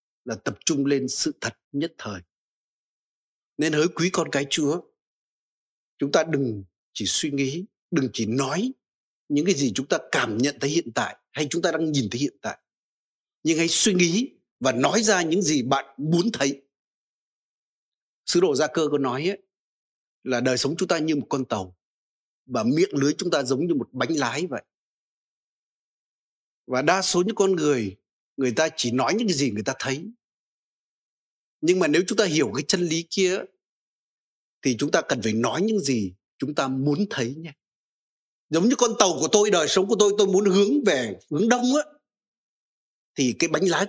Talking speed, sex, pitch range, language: 190 wpm, male, 135-200 Hz, Vietnamese